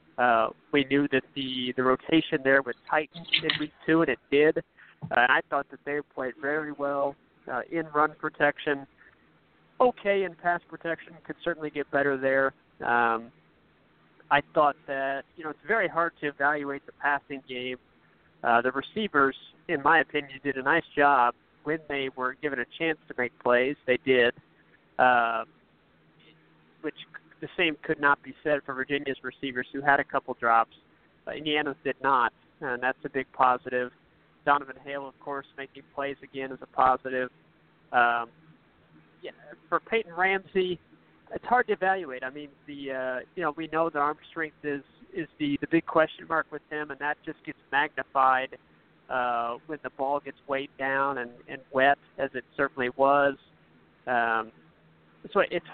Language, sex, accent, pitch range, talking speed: English, male, American, 130-155 Hz, 170 wpm